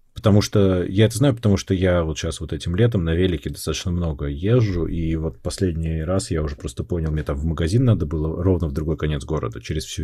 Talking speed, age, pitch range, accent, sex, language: 235 wpm, 30-49, 85-115 Hz, native, male, Russian